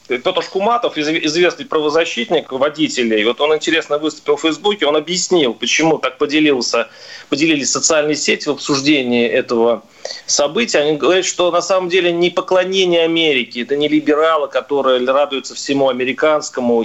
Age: 30-49